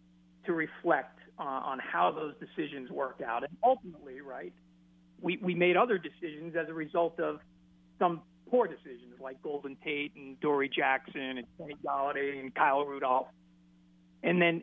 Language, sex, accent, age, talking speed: English, male, American, 50-69, 150 wpm